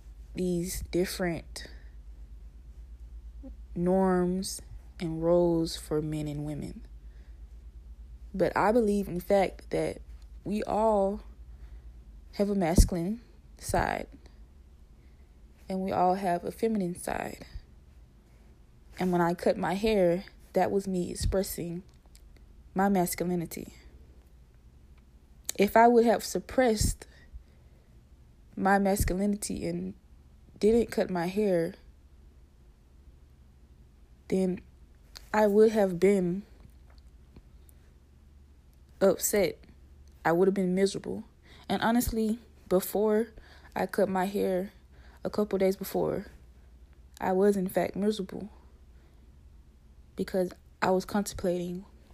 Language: English